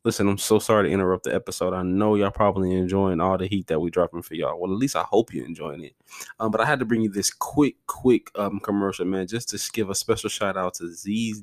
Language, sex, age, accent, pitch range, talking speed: English, male, 20-39, American, 100-125 Hz, 270 wpm